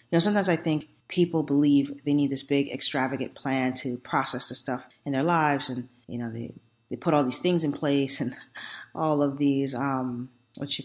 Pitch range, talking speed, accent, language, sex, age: 130-150 Hz, 210 wpm, American, English, female, 30-49